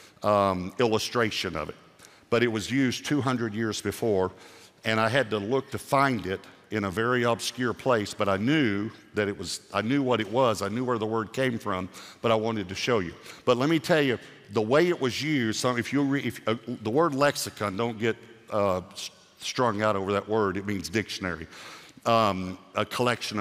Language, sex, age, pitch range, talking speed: English, male, 50-69, 105-125 Hz, 205 wpm